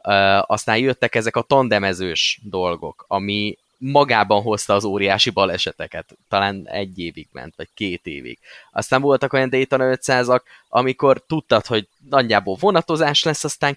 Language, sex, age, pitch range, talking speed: Hungarian, male, 20-39, 100-135 Hz, 140 wpm